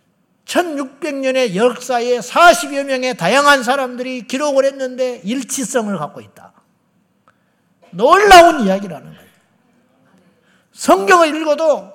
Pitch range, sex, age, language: 230-345 Hz, male, 50-69, Korean